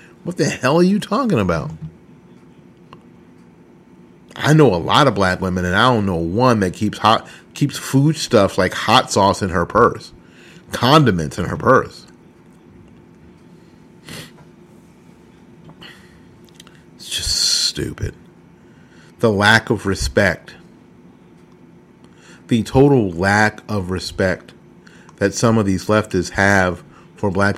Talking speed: 120 wpm